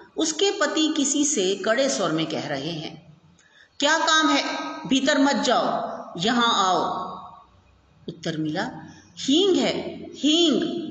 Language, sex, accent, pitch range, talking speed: Hindi, female, native, 185-310 Hz, 125 wpm